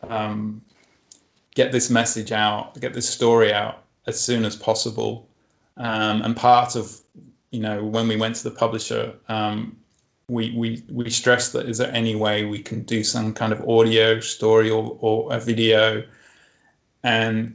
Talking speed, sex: 165 wpm, male